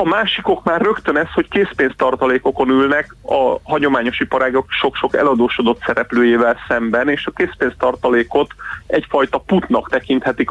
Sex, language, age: male, Hungarian, 30-49